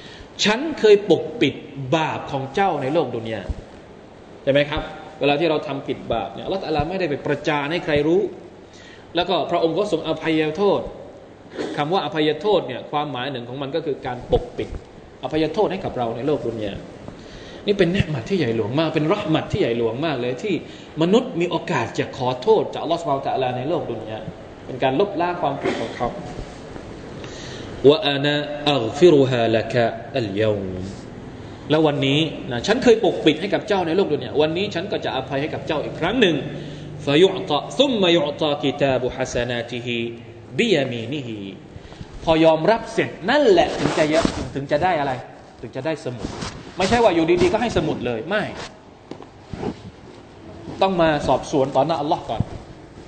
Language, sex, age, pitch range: Thai, male, 20-39, 130-170 Hz